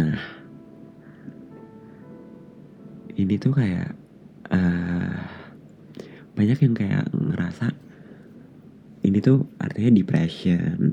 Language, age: Indonesian, 30-49